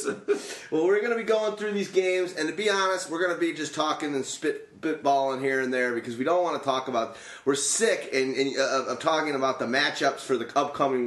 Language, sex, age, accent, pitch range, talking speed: English, male, 30-49, American, 125-165 Hz, 230 wpm